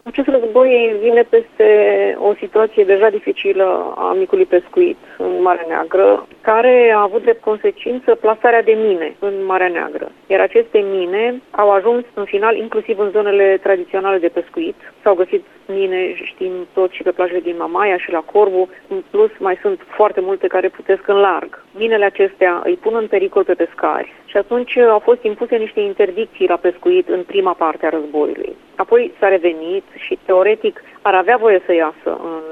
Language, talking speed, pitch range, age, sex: Romanian, 175 wpm, 185-305 Hz, 30-49, female